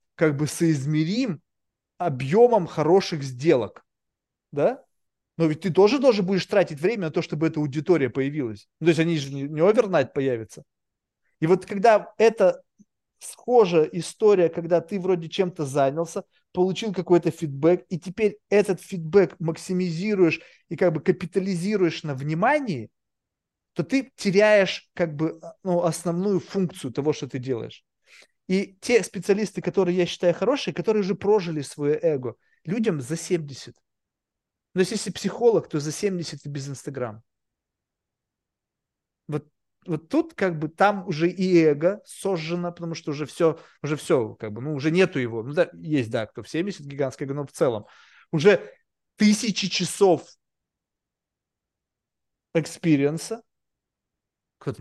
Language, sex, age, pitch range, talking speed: Russian, male, 20-39, 150-195 Hz, 140 wpm